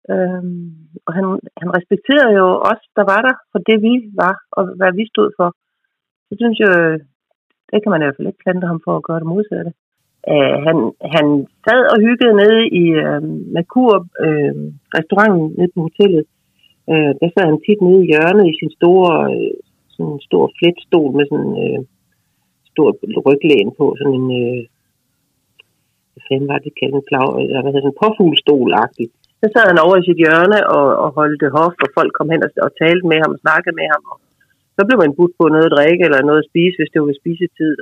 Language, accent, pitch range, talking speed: Danish, native, 145-190 Hz, 200 wpm